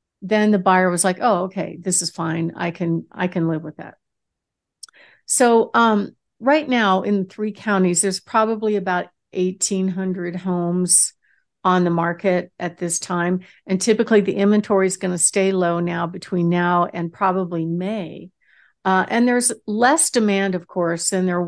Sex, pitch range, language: female, 175-210 Hz, English